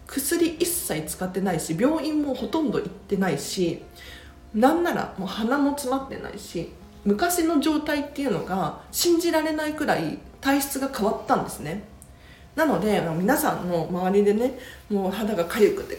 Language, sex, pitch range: Japanese, female, 180-295 Hz